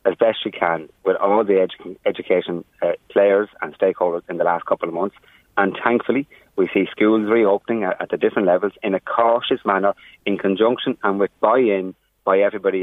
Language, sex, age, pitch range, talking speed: English, male, 30-49, 95-140 Hz, 185 wpm